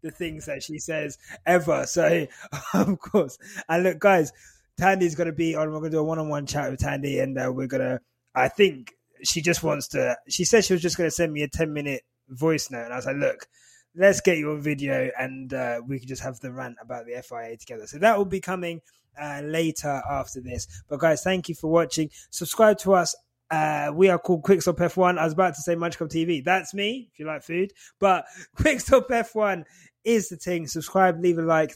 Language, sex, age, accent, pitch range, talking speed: English, male, 20-39, British, 140-180 Hz, 225 wpm